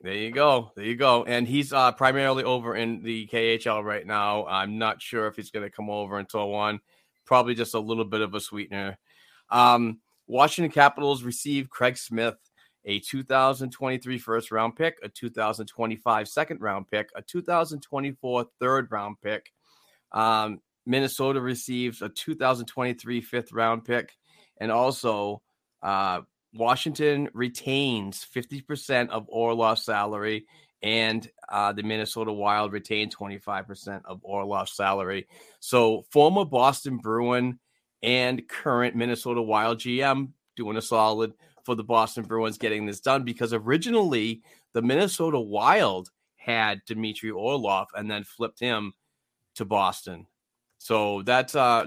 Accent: American